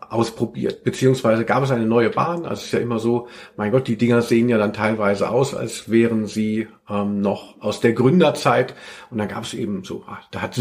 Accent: German